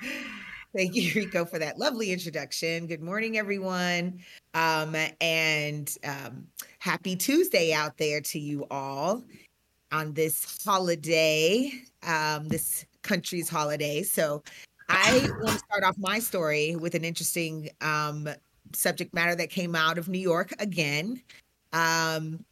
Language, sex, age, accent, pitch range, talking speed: English, female, 30-49, American, 160-200 Hz, 130 wpm